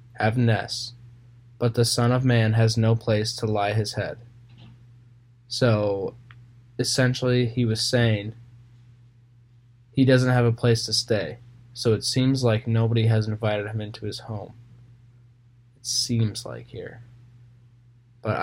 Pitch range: 115-120 Hz